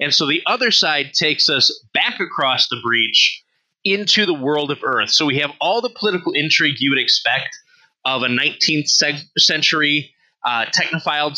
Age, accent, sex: 20-39, American, male